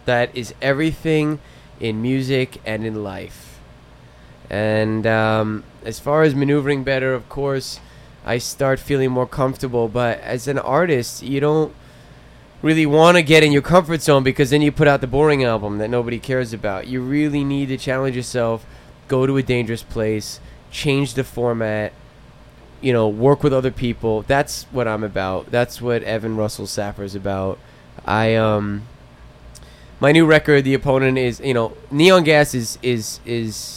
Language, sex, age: English, male, 20-39